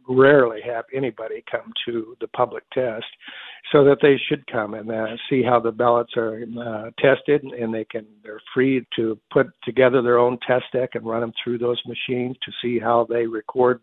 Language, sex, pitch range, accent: English, male, 115-130 Hz, American